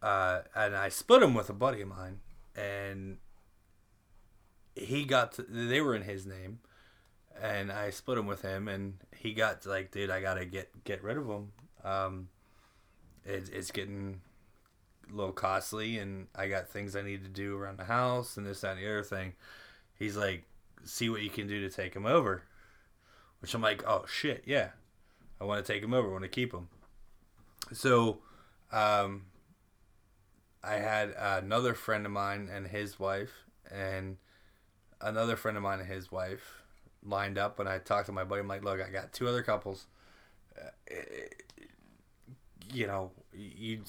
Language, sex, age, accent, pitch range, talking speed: English, male, 20-39, American, 95-105 Hz, 180 wpm